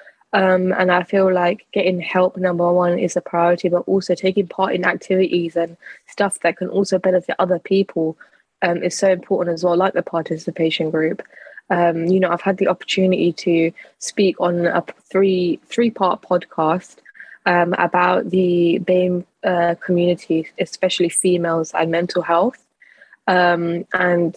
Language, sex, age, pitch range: English, female, 20-39, 170-185 Hz